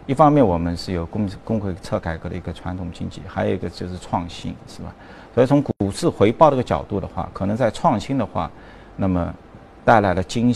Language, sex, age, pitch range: Chinese, male, 50-69, 95-145 Hz